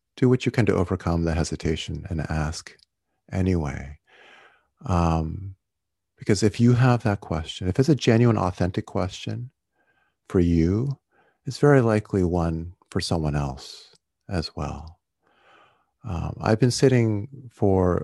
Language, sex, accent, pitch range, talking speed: English, male, American, 80-105 Hz, 135 wpm